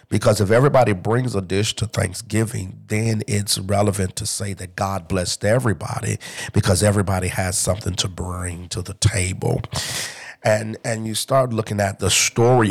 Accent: American